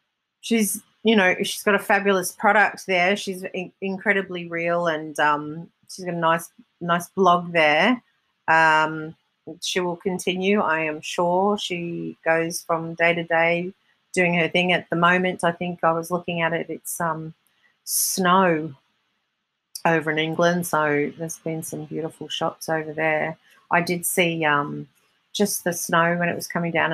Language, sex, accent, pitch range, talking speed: English, female, Australian, 160-195 Hz, 165 wpm